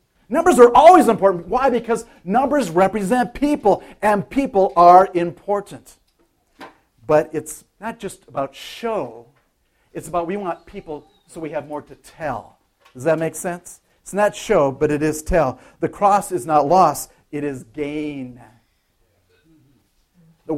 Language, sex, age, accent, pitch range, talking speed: English, male, 50-69, American, 155-200 Hz, 145 wpm